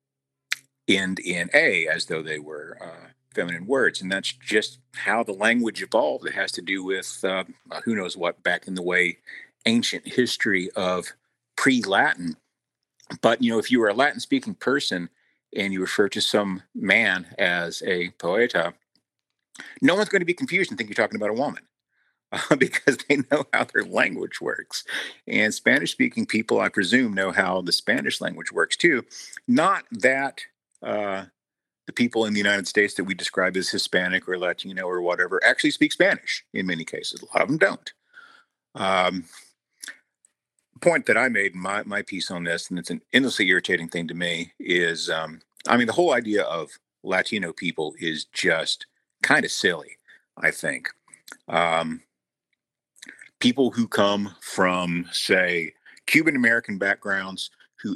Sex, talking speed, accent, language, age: male, 165 wpm, American, English, 50-69